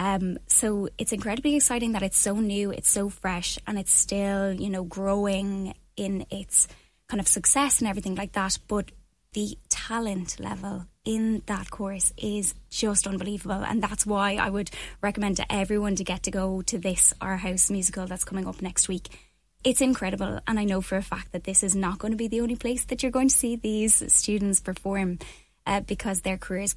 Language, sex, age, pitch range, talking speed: English, female, 10-29, 185-210 Hz, 200 wpm